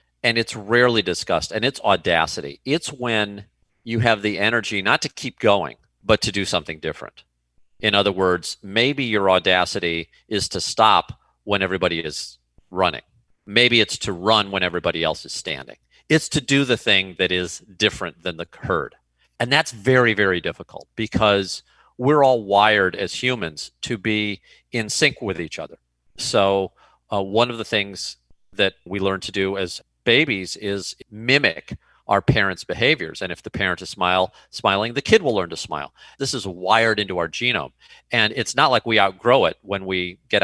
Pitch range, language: 95-120 Hz, English